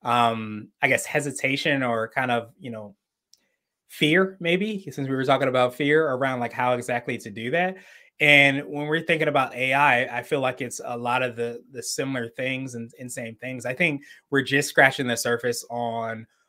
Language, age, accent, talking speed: English, 20-39, American, 195 wpm